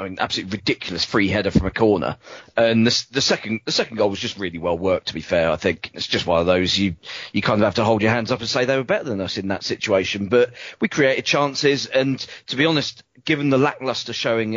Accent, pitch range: British, 100-120 Hz